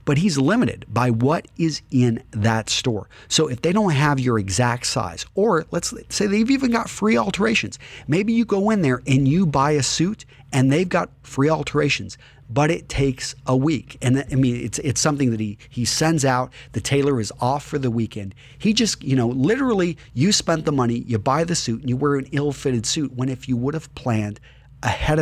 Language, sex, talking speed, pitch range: English, male, 210 wpm, 115-145 Hz